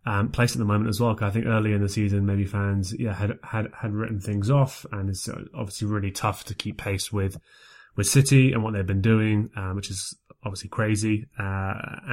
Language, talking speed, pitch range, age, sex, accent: English, 225 wpm, 100-115 Hz, 20-39, male, British